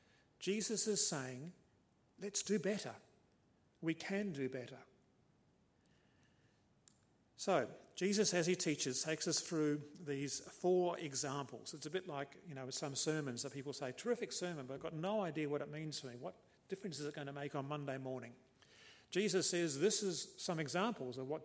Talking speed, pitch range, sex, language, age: 175 wpm, 135-170 Hz, male, English, 50-69